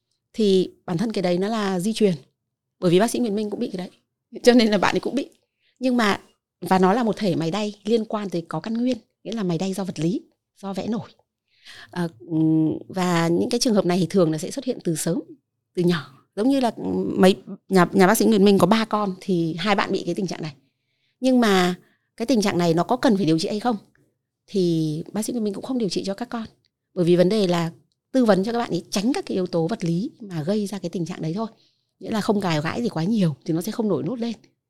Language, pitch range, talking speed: Vietnamese, 170-225 Hz, 270 wpm